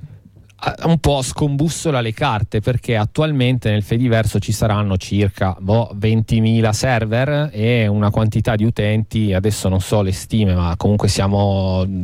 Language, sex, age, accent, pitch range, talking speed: Italian, male, 30-49, native, 100-115 Hz, 140 wpm